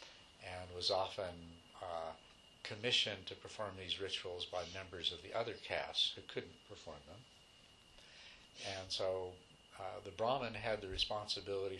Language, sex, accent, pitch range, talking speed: English, male, American, 85-110 Hz, 135 wpm